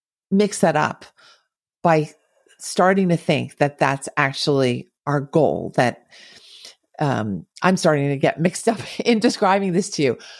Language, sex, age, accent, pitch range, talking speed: English, female, 40-59, American, 145-175 Hz, 145 wpm